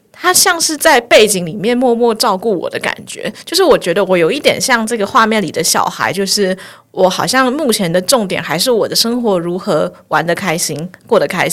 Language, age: Chinese, 20-39